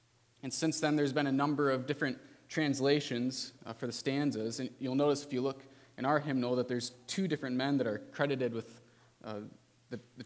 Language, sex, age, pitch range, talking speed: English, male, 20-39, 120-145 Hz, 205 wpm